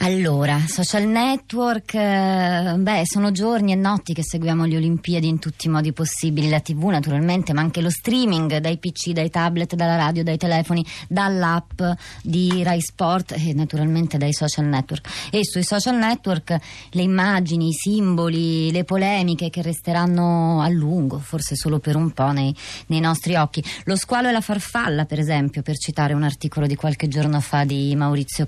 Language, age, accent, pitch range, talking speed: Italian, 30-49, native, 150-180 Hz, 170 wpm